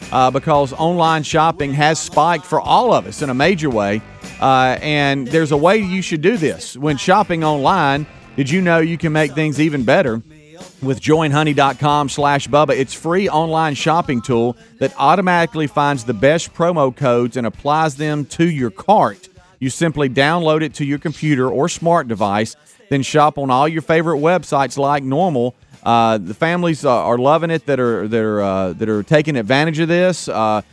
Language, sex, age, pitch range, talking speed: English, male, 40-59, 130-160 Hz, 185 wpm